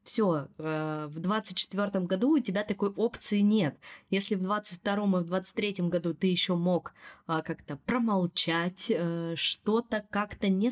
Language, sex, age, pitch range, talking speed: Russian, female, 20-39, 170-200 Hz, 160 wpm